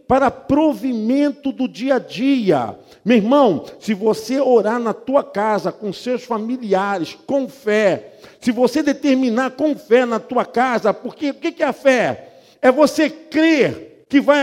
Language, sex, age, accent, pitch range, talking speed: Portuguese, male, 50-69, Brazilian, 250-315 Hz, 160 wpm